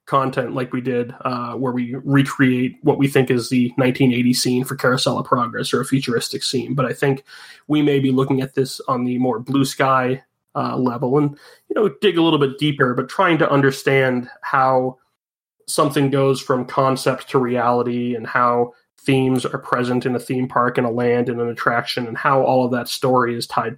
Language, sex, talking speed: English, male, 205 wpm